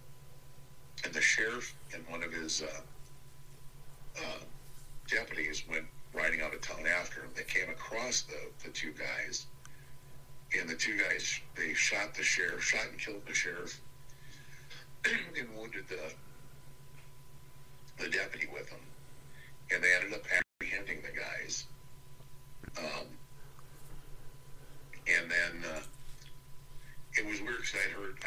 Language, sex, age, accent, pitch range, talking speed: English, male, 60-79, American, 130-140 Hz, 130 wpm